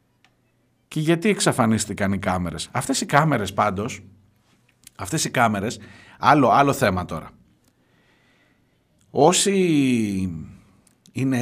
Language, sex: Greek, male